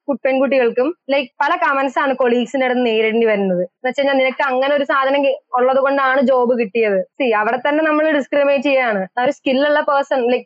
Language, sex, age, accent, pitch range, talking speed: Malayalam, female, 20-39, native, 240-290 Hz, 165 wpm